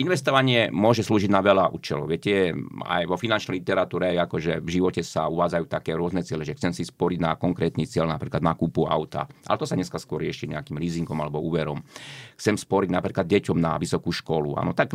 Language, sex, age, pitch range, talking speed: Slovak, male, 30-49, 80-100 Hz, 200 wpm